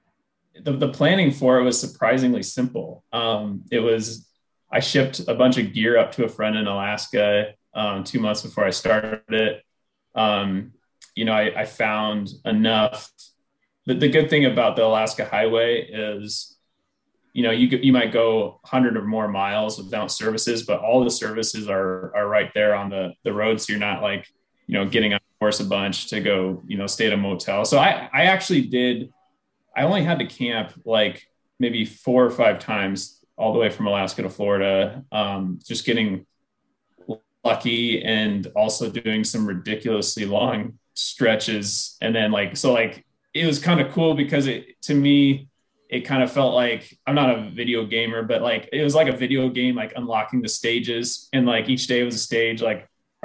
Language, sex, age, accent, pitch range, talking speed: English, male, 20-39, American, 105-125 Hz, 190 wpm